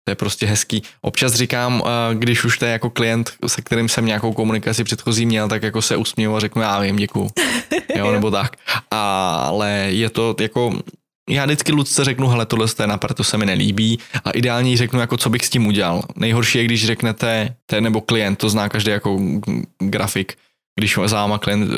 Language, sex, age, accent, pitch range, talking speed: Czech, male, 10-29, native, 105-115 Hz, 190 wpm